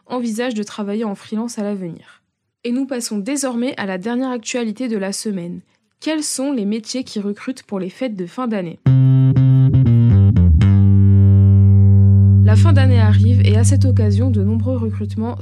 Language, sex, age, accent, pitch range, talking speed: French, female, 20-39, French, 185-235 Hz, 160 wpm